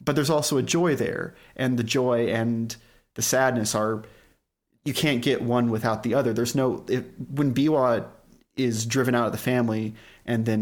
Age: 30-49